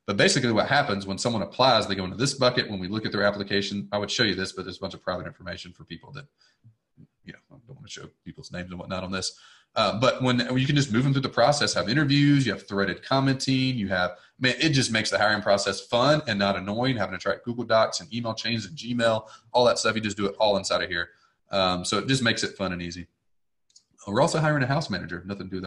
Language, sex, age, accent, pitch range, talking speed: English, male, 30-49, American, 95-120 Hz, 270 wpm